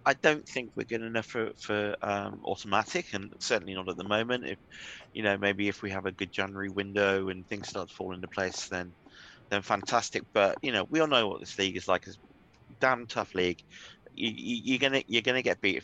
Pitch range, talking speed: 95-115 Hz, 235 wpm